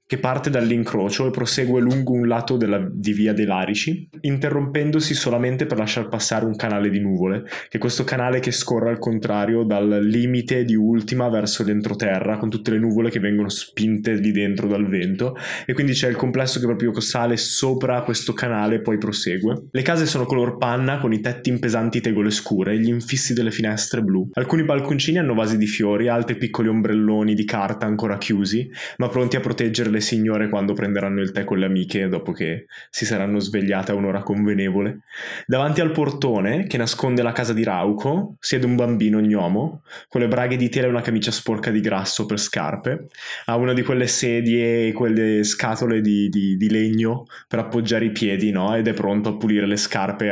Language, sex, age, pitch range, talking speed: Italian, male, 20-39, 105-125 Hz, 195 wpm